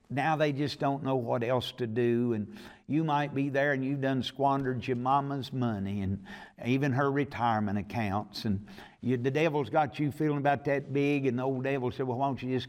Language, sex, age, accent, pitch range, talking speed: English, male, 60-79, American, 110-145 Hz, 215 wpm